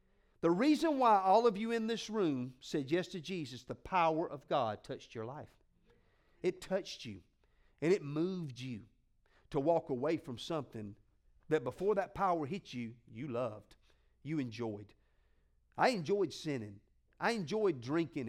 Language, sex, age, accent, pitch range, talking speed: English, male, 50-69, American, 145-210 Hz, 160 wpm